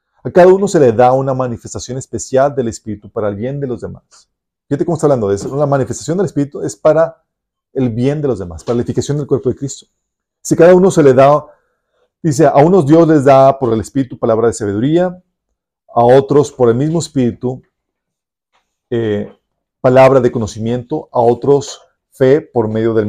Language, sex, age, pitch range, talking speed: Spanish, male, 40-59, 115-145 Hz, 195 wpm